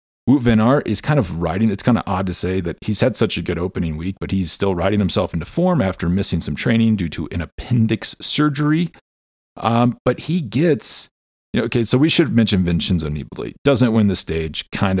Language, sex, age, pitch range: English, male, 40-59, 85-125 Hz